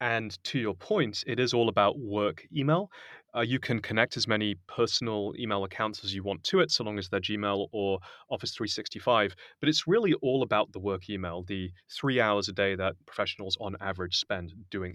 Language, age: English, 30-49